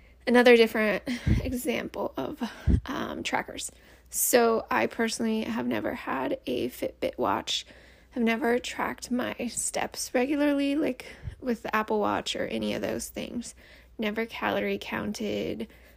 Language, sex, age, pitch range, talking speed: English, female, 20-39, 210-245 Hz, 130 wpm